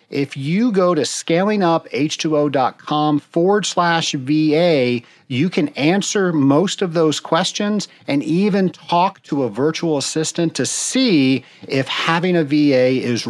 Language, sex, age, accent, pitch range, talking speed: English, male, 40-59, American, 130-180 Hz, 130 wpm